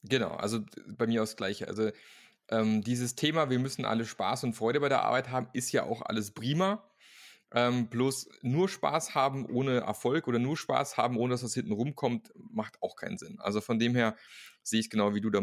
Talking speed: 220 wpm